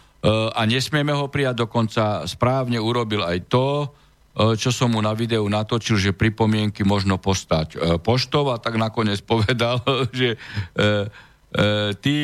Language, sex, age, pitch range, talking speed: Slovak, male, 50-69, 110-135 Hz, 125 wpm